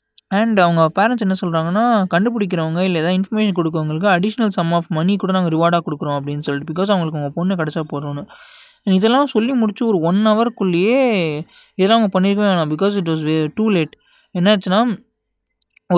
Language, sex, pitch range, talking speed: Tamil, male, 165-210 Hz, 165 wpm